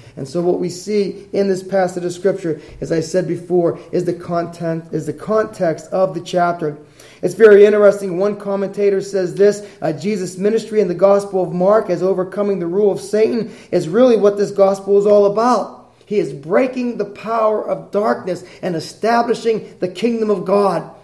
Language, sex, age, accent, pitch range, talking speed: English, male, 30-49, American, 165-220 Hz, 185 wpm